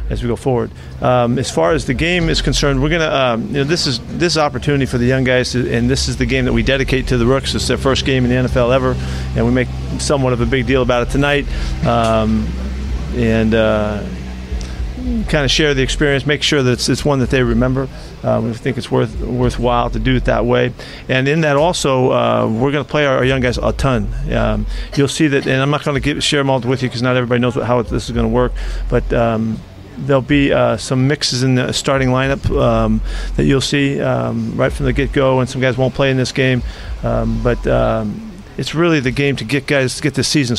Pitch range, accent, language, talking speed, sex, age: 115-140 Hz, American, English, 245 wpm, male, 40-59